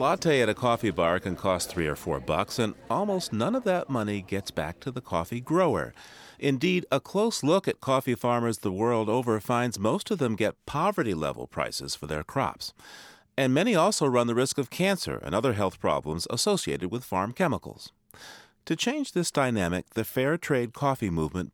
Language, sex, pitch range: English, male, 85-135 Hz